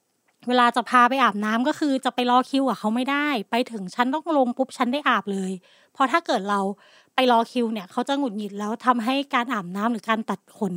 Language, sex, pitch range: Thai, female, 225-285 Hz